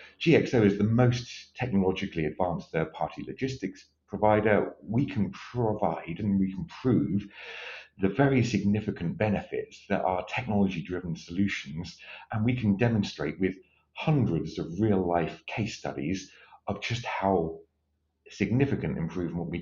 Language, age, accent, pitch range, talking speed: English, 50-69, British, 85-115 Hz, 120 wpm